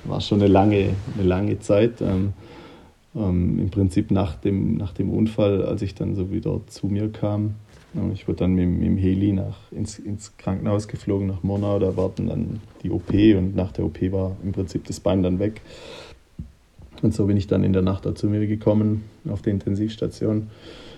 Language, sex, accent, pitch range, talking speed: German, male, German, 95-105 Hz, 195 wpm